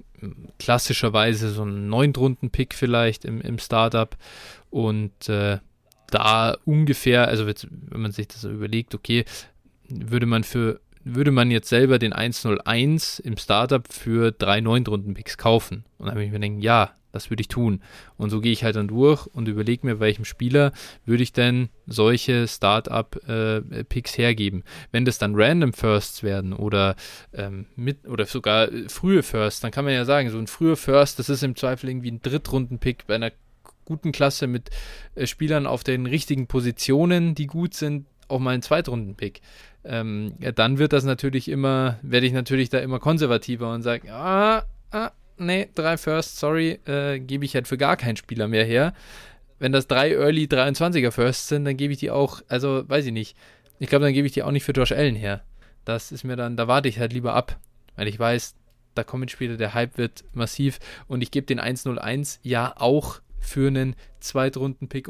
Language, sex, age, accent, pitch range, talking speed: German, male, 20-39, German, 110-140 Hz, 185 wpm